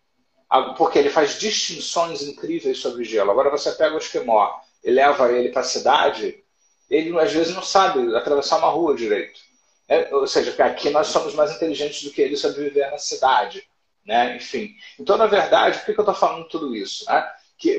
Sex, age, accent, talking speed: male, 40-59, Brazilian, 190 wpm